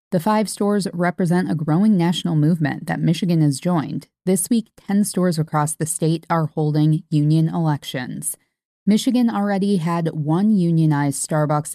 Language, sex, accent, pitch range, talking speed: English, female, American, 155-185 Hz, 150 wpm